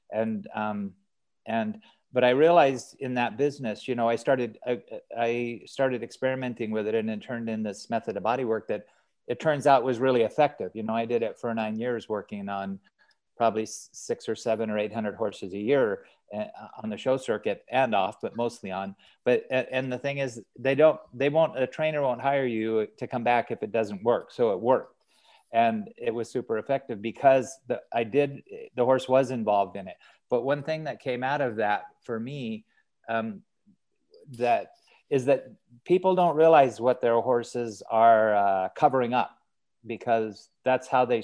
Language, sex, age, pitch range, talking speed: English, male, 40-59, 110-135 Hz, 190 wpm